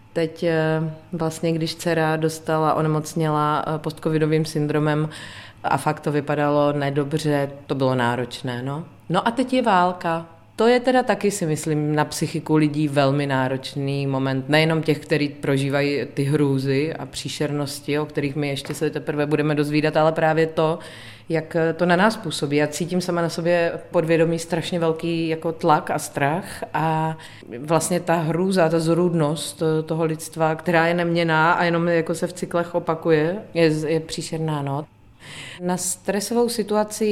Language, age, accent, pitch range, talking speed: Czech, 30-49, native, 150-175 Hz, 155 wpm